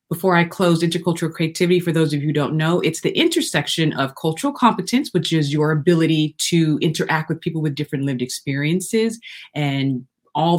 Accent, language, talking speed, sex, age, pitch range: American, English, 180 wpm, female, 30-49, 145-185 Hz